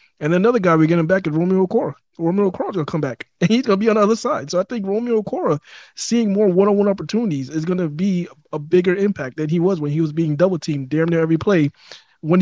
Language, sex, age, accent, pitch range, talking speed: English, male, 20-39, American, 145-185 Hz, 245 wpm